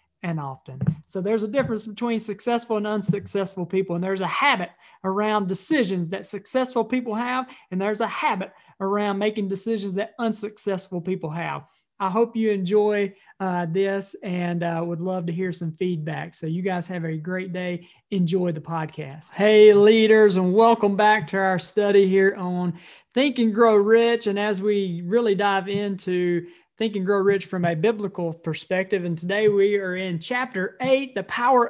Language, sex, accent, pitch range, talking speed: English, male, American, 180-215 Hz, 175 wpm